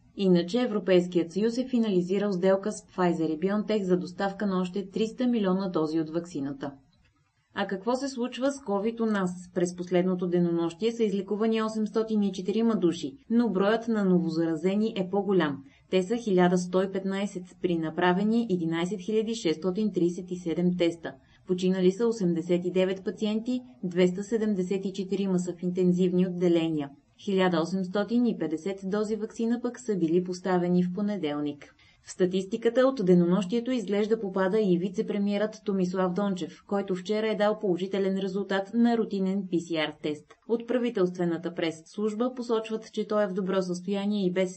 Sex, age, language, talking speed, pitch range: female, 20-39, Bulgarian, 130 wpm, 175-215 Hz